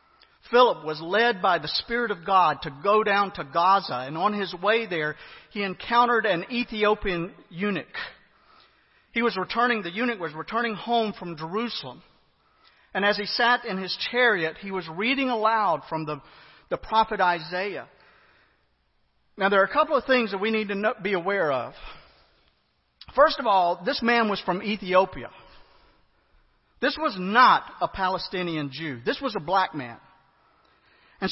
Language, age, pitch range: English, 50-69, 180-245 Hz